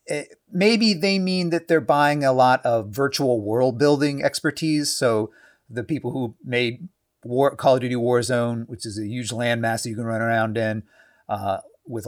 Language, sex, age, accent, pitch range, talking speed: English, male, 30-49, American, 105-135 Hz, 175 wpm